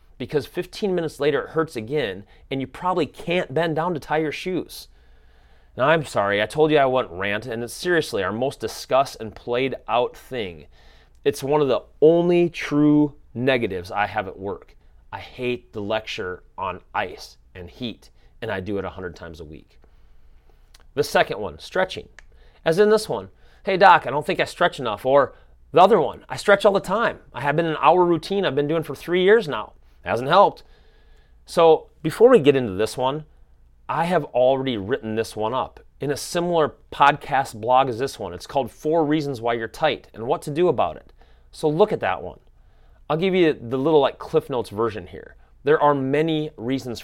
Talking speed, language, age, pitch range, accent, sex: 205 wpm, English, 30-49, 110-160 Hz, American, male